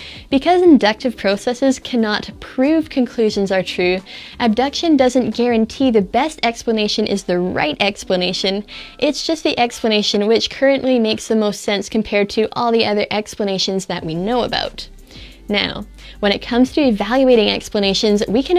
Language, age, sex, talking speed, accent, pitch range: English, 20-39, female, 150 wpm, American, 200-250 Hz